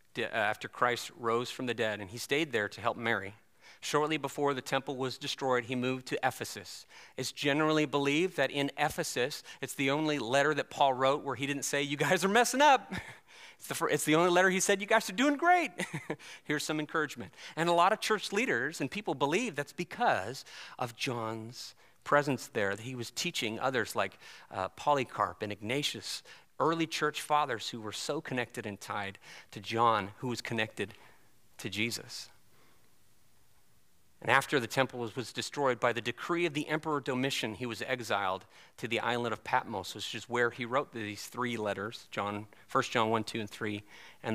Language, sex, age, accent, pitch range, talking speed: English, male, 40-59, American, 115-150 Hz, 185 wpm